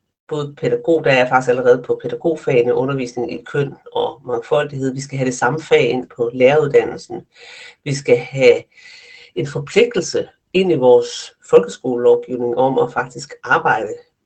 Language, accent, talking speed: Danish, native, 145 wpm